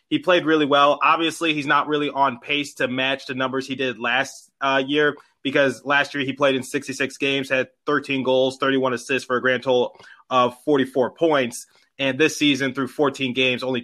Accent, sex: American, male